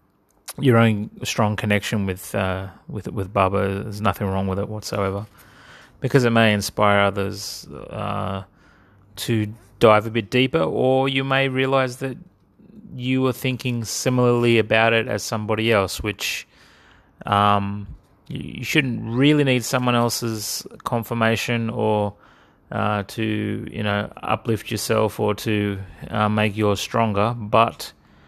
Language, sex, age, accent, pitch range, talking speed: English, male, 30-49, Australian, 100-115 Hz, 135 wpm